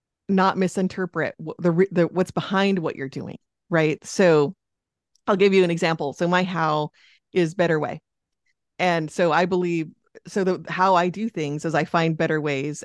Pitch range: 170-220 Hz